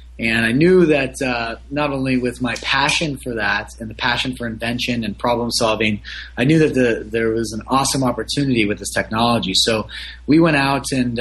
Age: 30-49